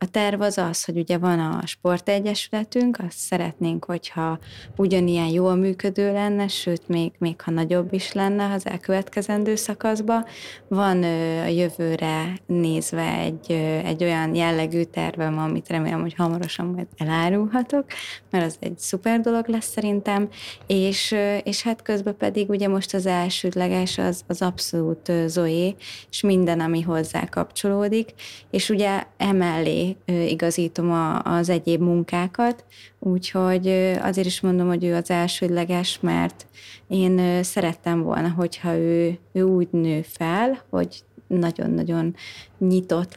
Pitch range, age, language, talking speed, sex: 165-200 Hz, 20-39, Hungarian, 135 wpm, female